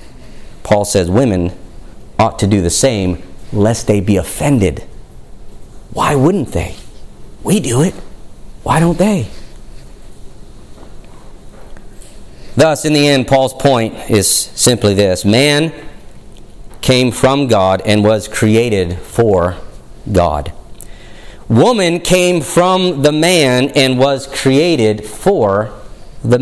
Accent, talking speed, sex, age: American, 110 wpm, male, 40-59